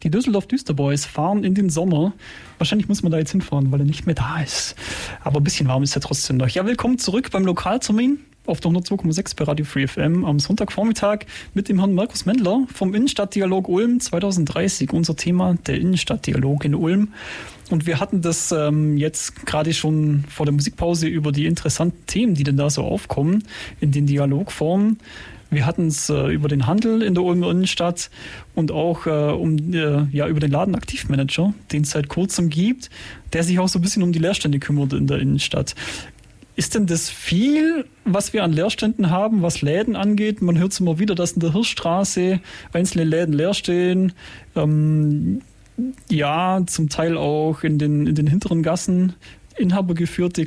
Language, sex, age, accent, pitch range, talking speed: German, male, 30-49, German, 150-195 Hz, 180 wpm